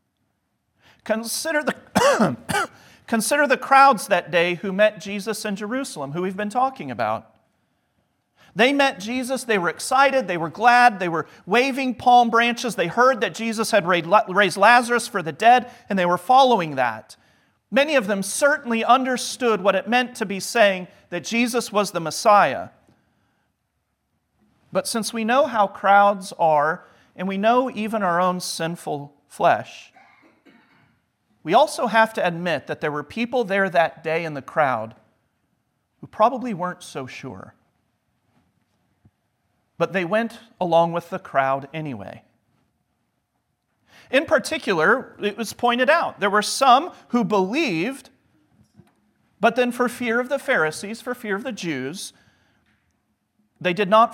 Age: 40-59